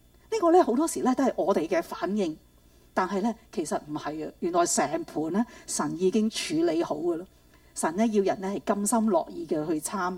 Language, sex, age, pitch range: Chinese, female, 40-59, 200-320 Hz